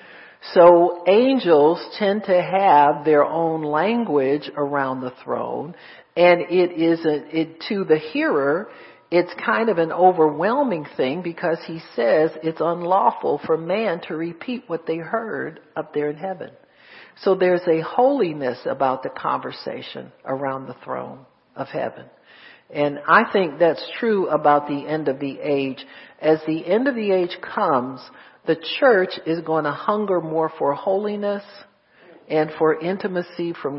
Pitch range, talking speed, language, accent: 145-175 Hz, 150 wpm, English, American